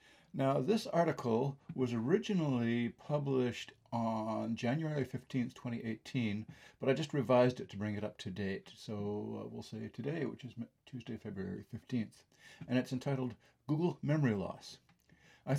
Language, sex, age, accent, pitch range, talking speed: English, male, 50-69, American, 115-140 Hz, 145 wpm